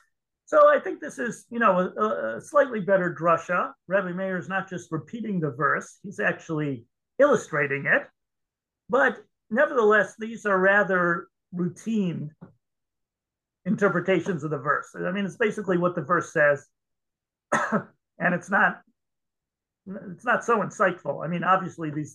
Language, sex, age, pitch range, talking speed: English, male, 50-69, 155-200 Hz, 145 wpm